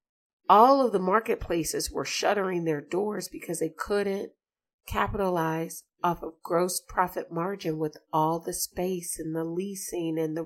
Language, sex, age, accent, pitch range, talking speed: English, female, 40-59, American, 170-210 Hz, 150 wpm